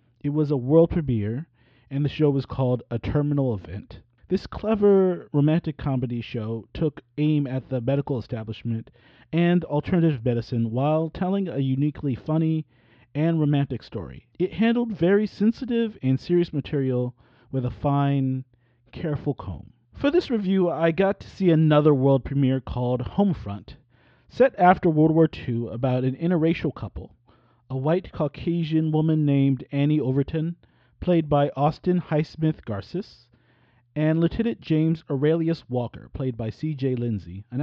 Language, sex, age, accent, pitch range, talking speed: English, male, 40-59, American, 120-165 Hz, 145 wpm